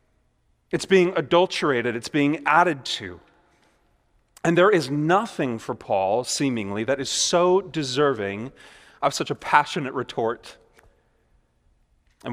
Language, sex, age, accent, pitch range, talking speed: English, male, 30-49, American, 115-145 Hz, 115 wpm